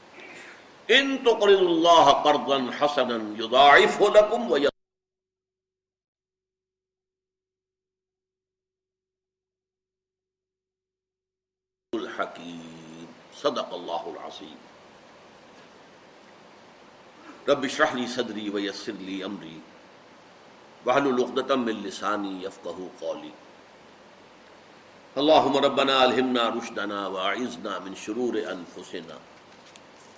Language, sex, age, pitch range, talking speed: Urdu, male, 50-69, 95-140 Hz, 70 wpm